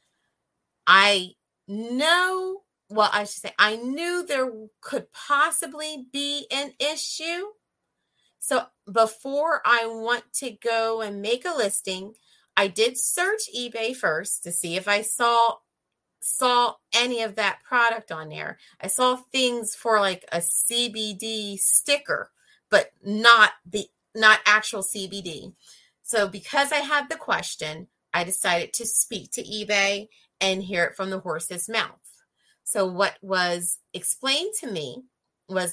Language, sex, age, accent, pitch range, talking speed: English, female, 30-49, American, 185-245 Hz, 135 wpm